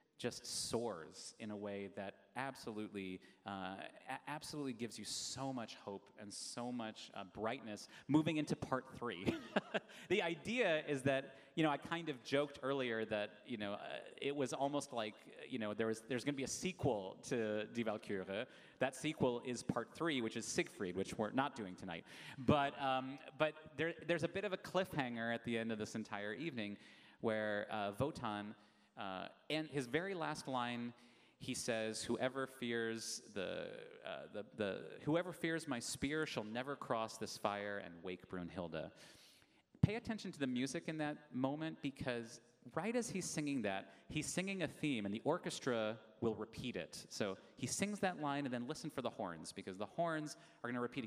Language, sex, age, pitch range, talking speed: English, male, 30-49, 110-155 Hz, 185 wpm